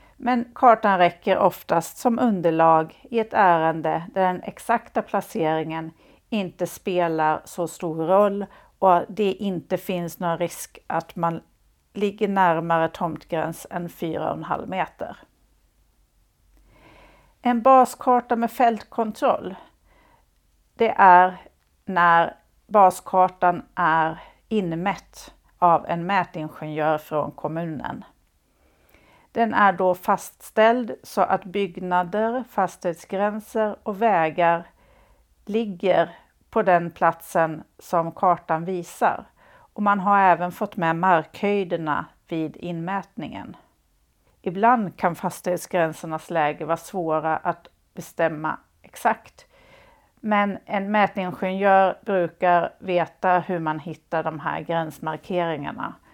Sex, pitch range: female, 165-205 Hz